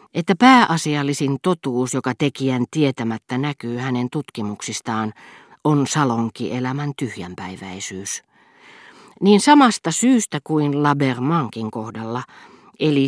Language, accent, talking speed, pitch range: Finnish, native, 90 wpm, 125-155 Hz